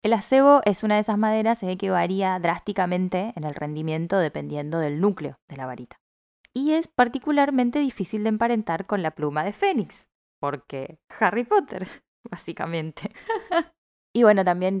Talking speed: 155 wpm